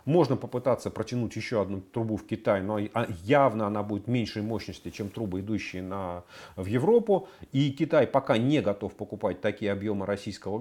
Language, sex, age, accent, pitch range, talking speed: Russian, male, 40-59, native, 105-155 Hz, 165 wpm